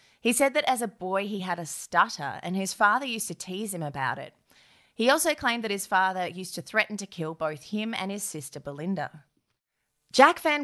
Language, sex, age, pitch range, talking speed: English, female, 20-39, 165-215 Hz, 215 wpm